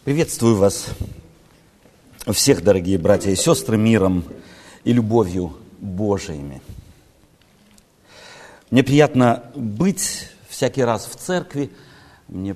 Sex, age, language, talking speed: male, 50-69, Russian, 90 wpm